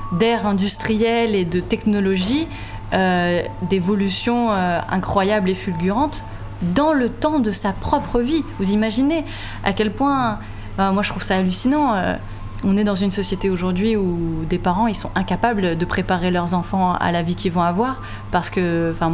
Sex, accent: female, French